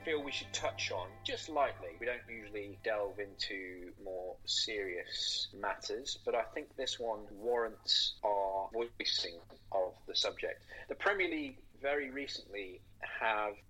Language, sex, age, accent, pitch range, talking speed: English, male, 30-49, British, 100-135 Hz, 140 wpm